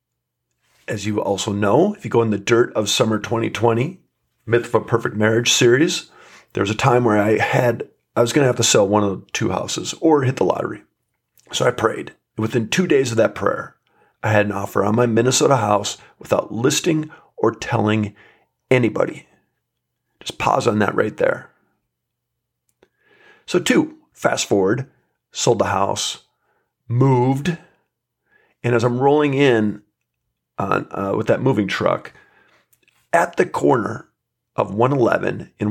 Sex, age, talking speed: male, 40-59, 160 wpm